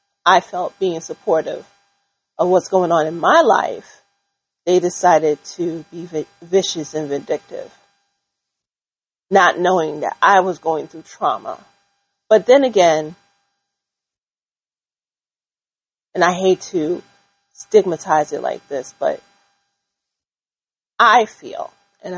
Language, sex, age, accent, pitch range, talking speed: English, female, 30-49, American, 160-200 Hz, 110 wpm